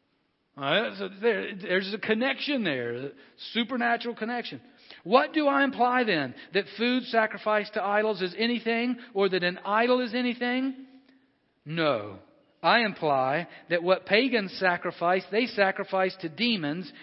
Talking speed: 140 wpm